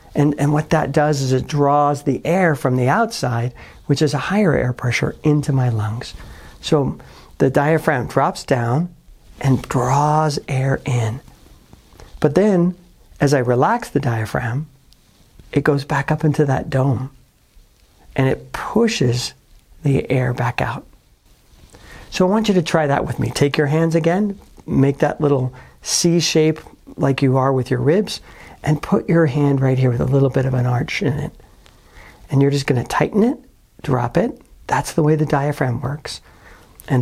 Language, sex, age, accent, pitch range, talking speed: English, male, 50-69, American, 125-155 Hz, 170 wpm